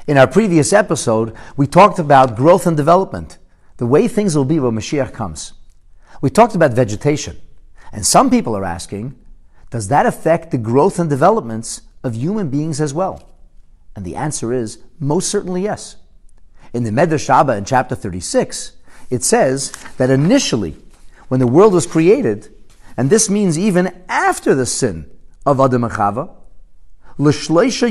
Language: English